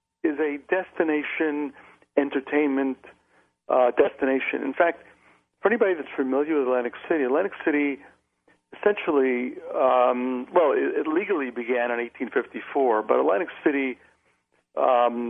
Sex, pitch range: male, 125-150 Hz